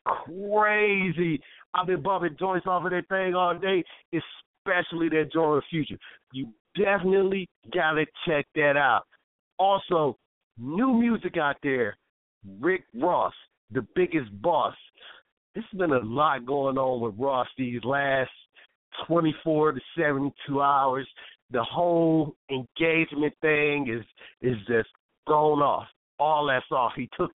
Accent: American